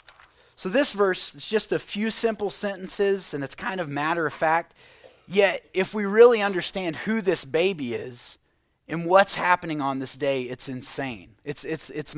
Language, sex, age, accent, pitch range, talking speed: English, male, 30-49, American, 140-195 Hz, 170 wpm